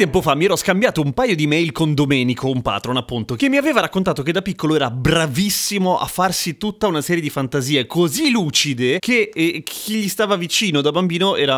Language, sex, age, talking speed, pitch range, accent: Italian, male, 30-49, 210 wpm, 145-195 Hz, native